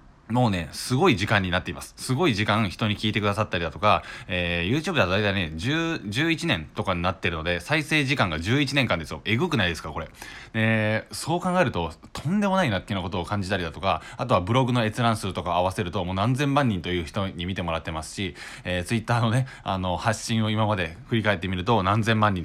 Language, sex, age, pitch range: Japanese, male, 20-39, 90-125 Hz